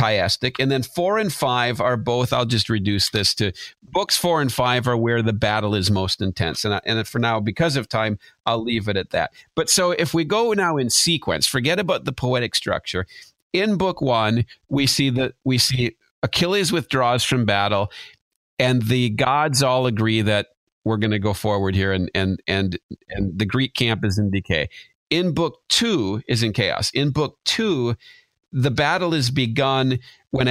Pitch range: 105-135 Hz